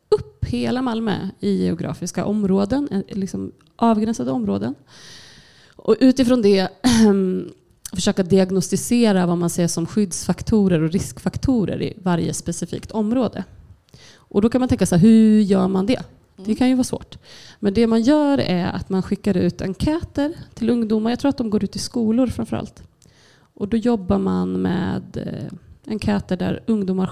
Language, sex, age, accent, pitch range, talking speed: Swedish, female, 30-49, native, 180-225 Hz, 155 wpm